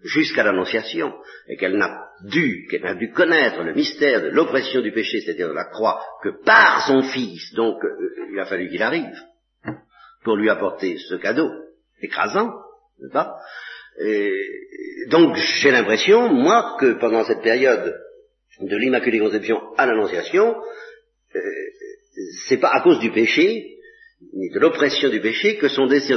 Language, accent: French, French